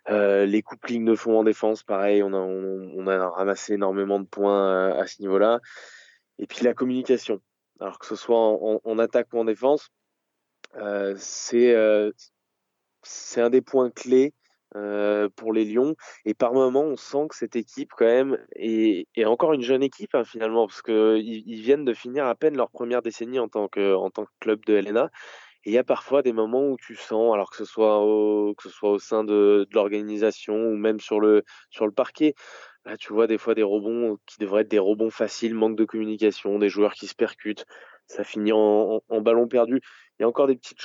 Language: French